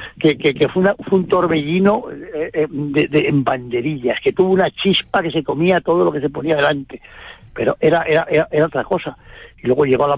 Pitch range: 140-175 Hz